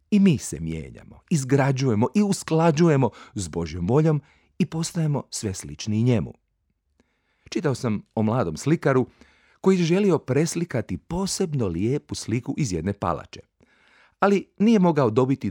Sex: male